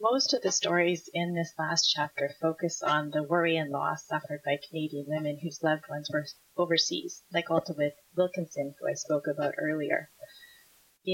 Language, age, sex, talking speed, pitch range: English, 30-49, female, 170 wpm, 150-180 Hz